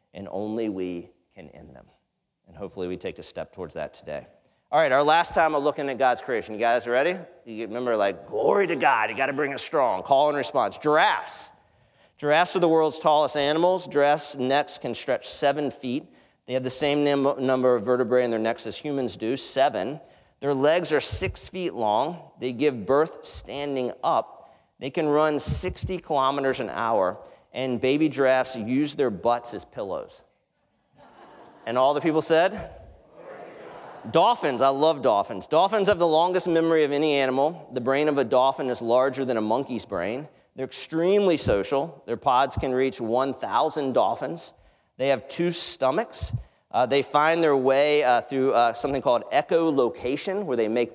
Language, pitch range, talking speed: English, 125-150 Hz, 175 wpm